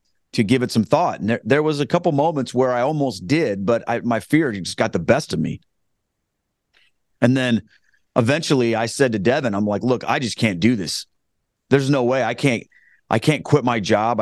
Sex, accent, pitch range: male, American, 115-145 Hz